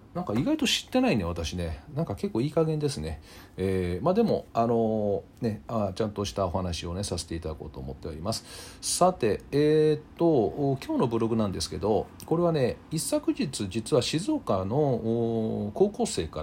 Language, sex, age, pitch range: Japanese, male, 40-59, 90-140 Hz